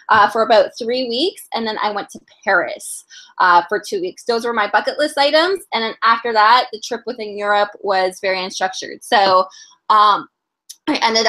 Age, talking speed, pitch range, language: 20-39, 190 wpm, 200-280 Hz, English